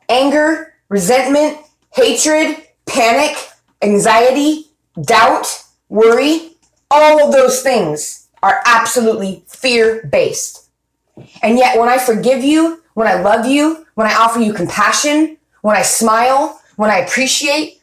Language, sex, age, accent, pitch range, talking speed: English, female, 20-39, American, 215-280 Hz, 120 wpm